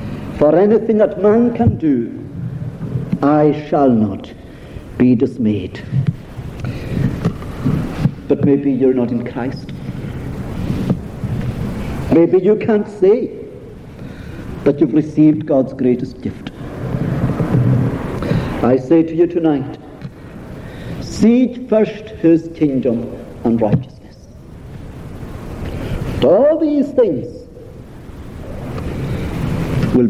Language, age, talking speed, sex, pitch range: English, 60-79, 85 wpm, male, 125-200 Hz